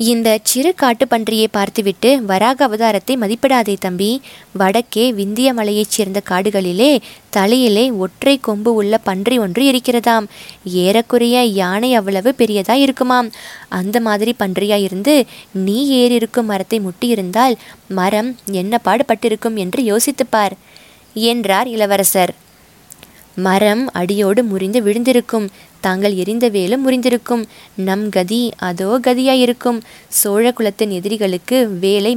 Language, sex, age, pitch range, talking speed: Tamil, female, 20-39, 195-240 Hz, 105 wpm